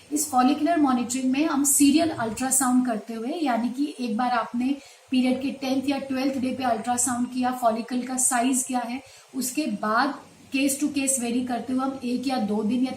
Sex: female